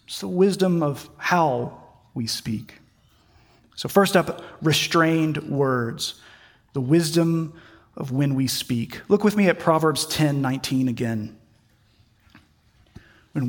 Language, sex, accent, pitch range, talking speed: English, male, American, 130-180 Hz, 115 wpm